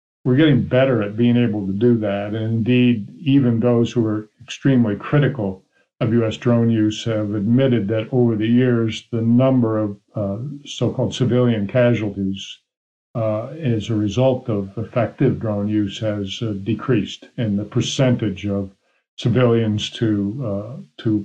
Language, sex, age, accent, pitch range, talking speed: English, male, 50-69, American, 105-125 Hz, 155 wpm